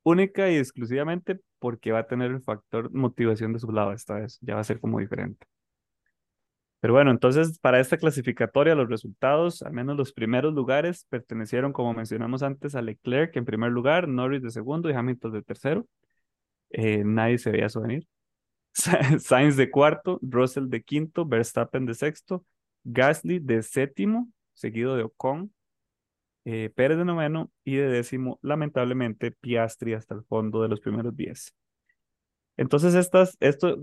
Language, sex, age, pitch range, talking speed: Spanish, male, 20-39, 115-150 Hz, 160 wpm